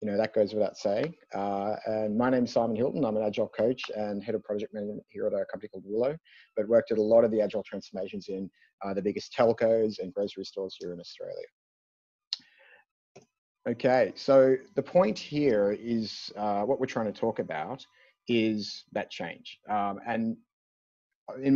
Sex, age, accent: male, 30-49, Australian